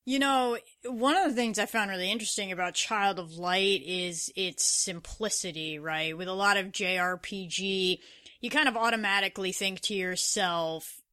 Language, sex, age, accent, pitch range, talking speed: English, female, 20-39, American, 180-215 Hz, 160 wpm